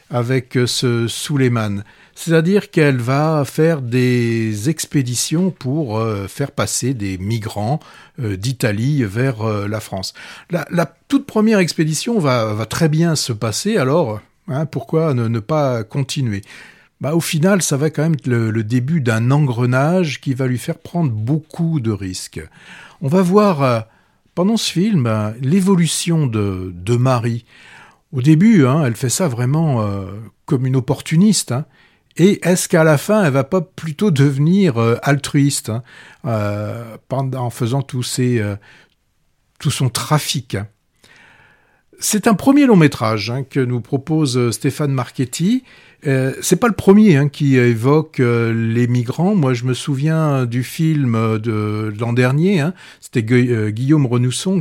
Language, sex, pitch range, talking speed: French, male, 120-160 Hz, 150 wpm